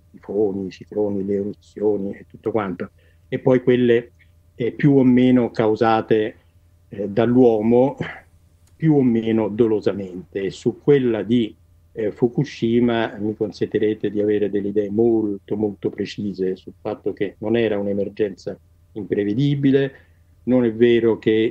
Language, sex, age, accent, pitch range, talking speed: Italian, male, 50-69, native, 100-115 Hz, 130 wpm